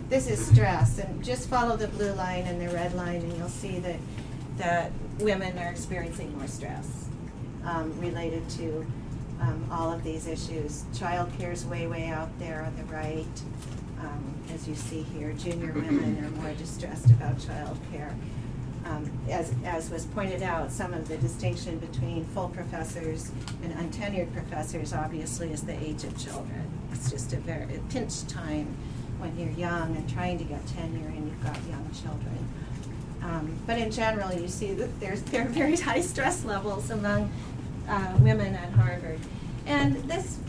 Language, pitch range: English, 130-175 Hz